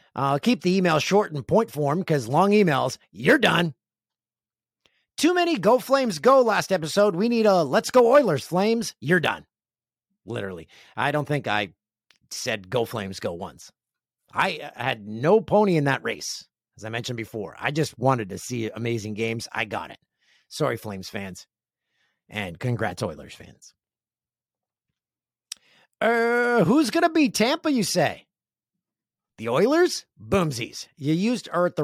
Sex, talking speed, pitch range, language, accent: male, 155 wpm, 115-190 Hz, English, American